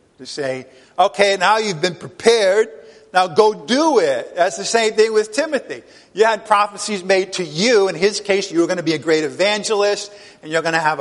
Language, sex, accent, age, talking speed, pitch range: English, male, American, 50-69, 215 wpm, 180-235 Hz